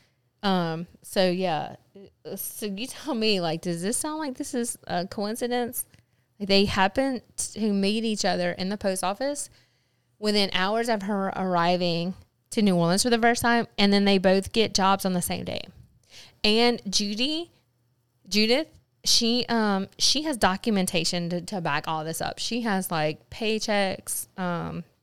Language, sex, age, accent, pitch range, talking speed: English, female, 20-39, American, 170-220 Hz, 160 wpm